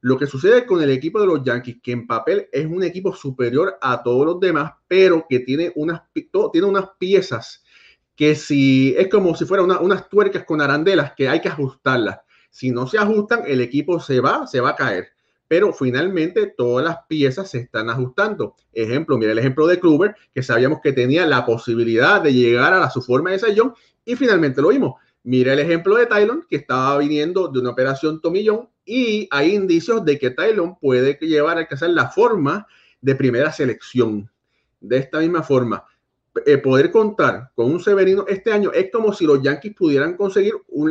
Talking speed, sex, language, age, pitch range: 195 wpm, male, English, 30-49, 130-205 Hz